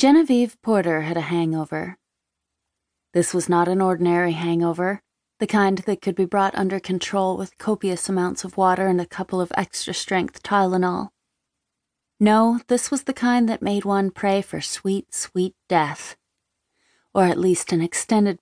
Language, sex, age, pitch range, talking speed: English, female, 30-49, 170-210 Hz, 155 wpm